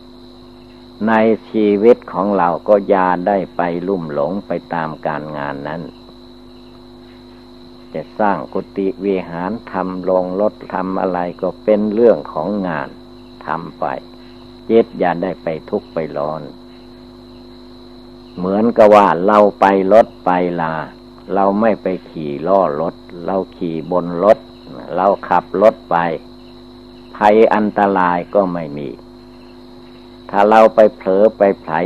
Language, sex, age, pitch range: Thai, male, 60-79, 85-120 Hz